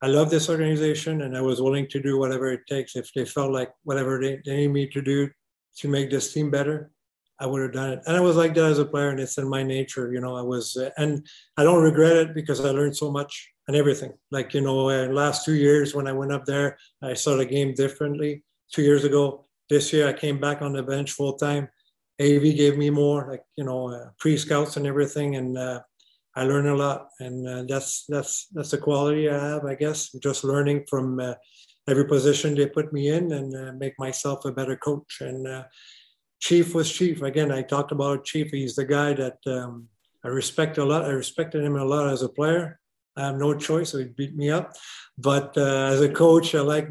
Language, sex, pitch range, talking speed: English, male, 135-150 Hz, 235 wpm